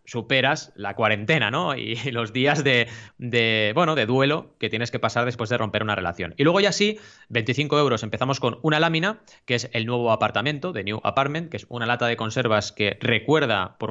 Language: Spanish